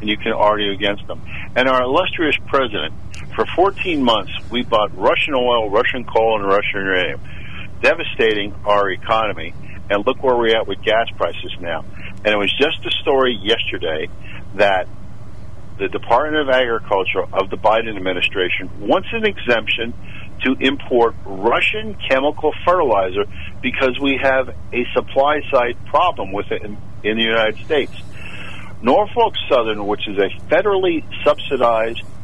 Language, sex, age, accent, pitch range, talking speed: English, male, 50-69, American, 100-130 Hz, 145 wpm